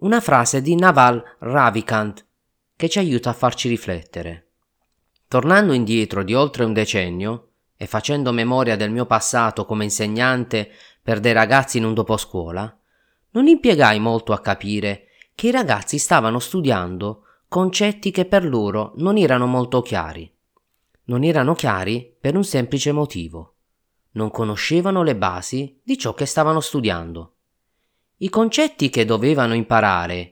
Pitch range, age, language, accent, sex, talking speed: 100-145 Hz, 30-49, Italian, native, male, 140 wpm